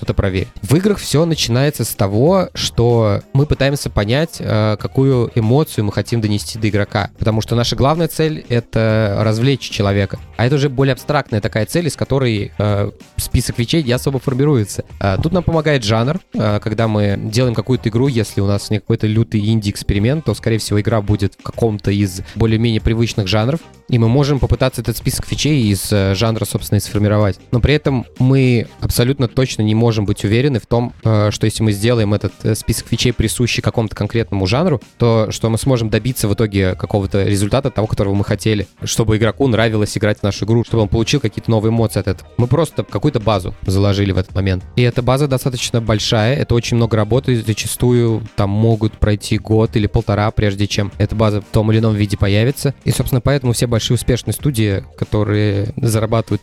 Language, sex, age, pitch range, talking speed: Russian, male, 20-39, 105-125 Hz, 185 wpm